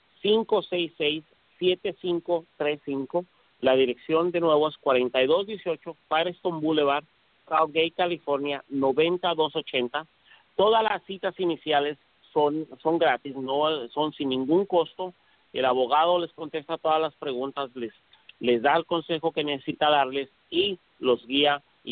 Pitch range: 130-165 Hz